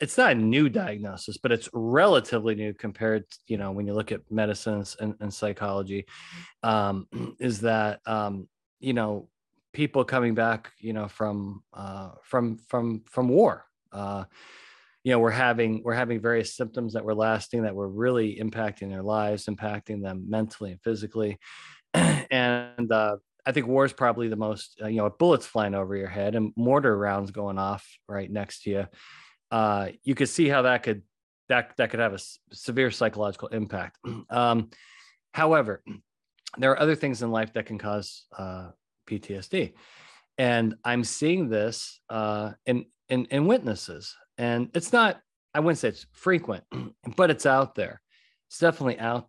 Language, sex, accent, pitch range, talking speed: English, male, American, 105-120 Hz, 170 wpm